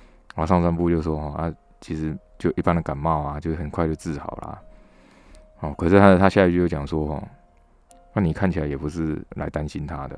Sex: male